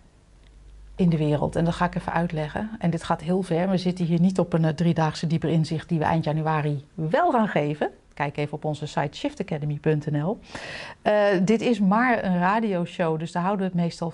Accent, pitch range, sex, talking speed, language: Dutch, 165-195 Hz, female, 205 wpm, Dutch